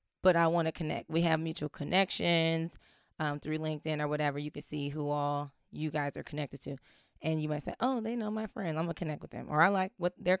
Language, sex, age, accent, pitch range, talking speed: English, female, 20-39, American, 155-195 Hz, 255 wpm